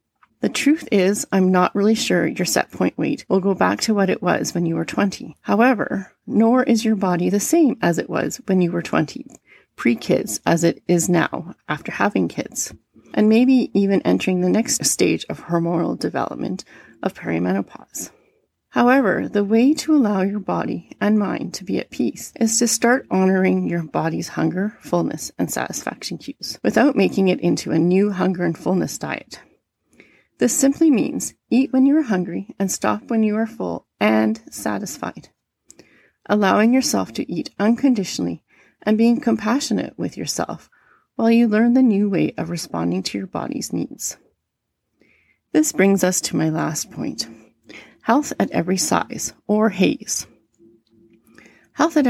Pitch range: 175-230 Hz